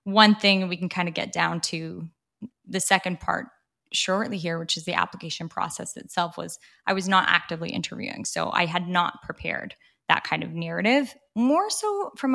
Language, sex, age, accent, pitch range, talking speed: English, female, 10-29, American, 175-215 Hz, 185 wpm